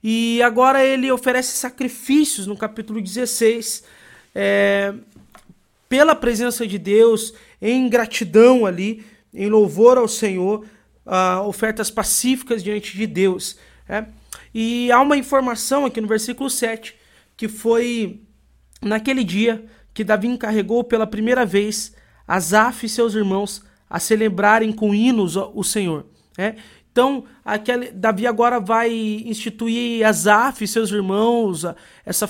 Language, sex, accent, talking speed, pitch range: Portuguese, male, Brazilian, 125 wpm, 205-240 Hz